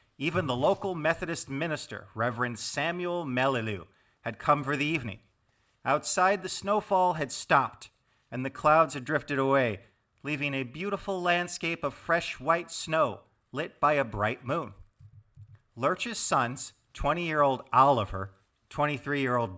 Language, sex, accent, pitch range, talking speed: English, male, American, 115-165 Hz, 130 wpm